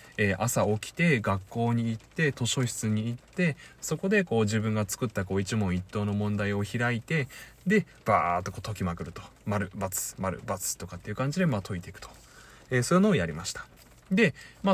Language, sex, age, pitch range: Japanese, male, 20-39, 100-150 Hz